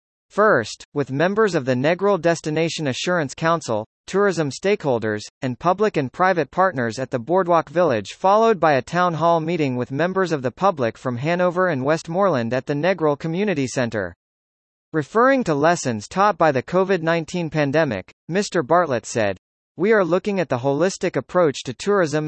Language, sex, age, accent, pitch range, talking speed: English, male, 40-59, American, 135-185 Hz, 160 wpm